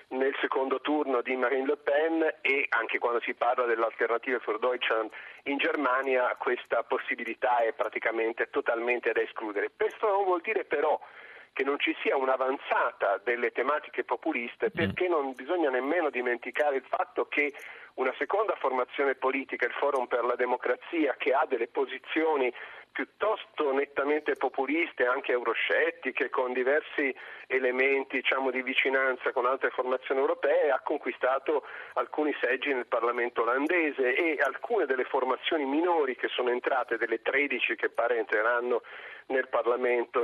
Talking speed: 140 wpm